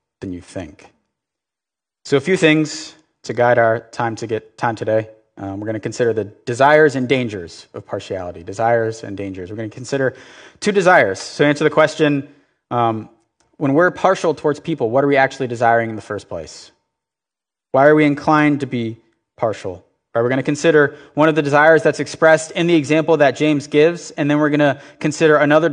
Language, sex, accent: English, male, American